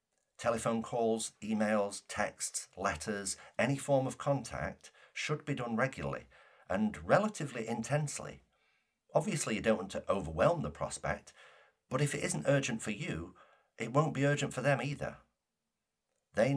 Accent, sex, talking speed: British, male, 140 wpm